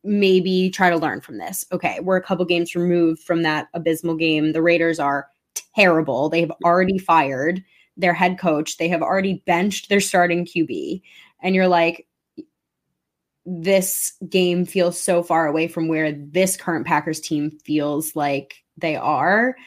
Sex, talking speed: female, 160 wpm